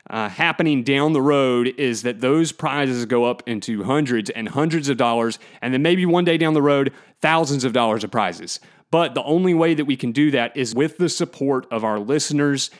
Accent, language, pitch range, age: American, English, 125-155 Hz, 30-49